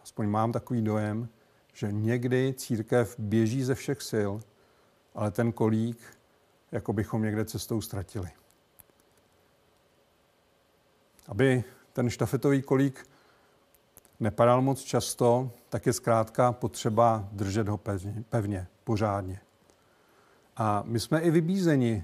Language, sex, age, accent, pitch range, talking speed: Czech, male, 50-69, native, 110-125 Hz, 105 wpm